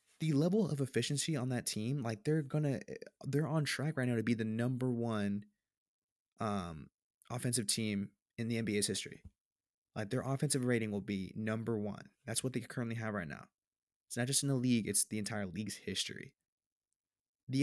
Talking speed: 185 wpm